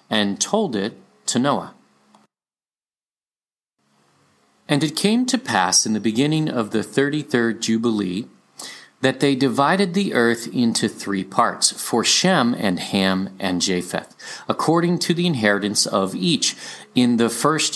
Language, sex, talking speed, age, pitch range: English, male, 135 wpm, 40-59, 95-140 Hz